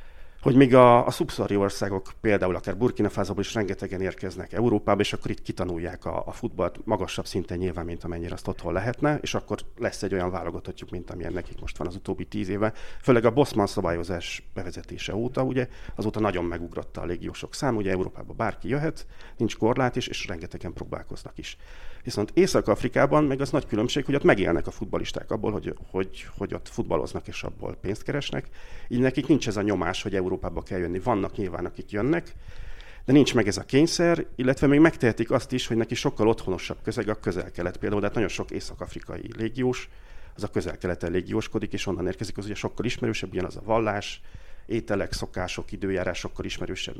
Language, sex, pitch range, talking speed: Hungarian, male, 90-120 Hz, 185 wpm